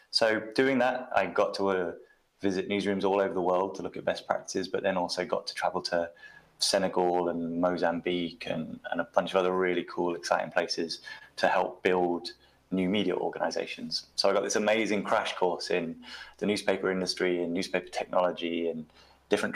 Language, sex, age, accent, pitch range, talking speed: English, male, 20-39, British, 85-95 Hz, 185 wpm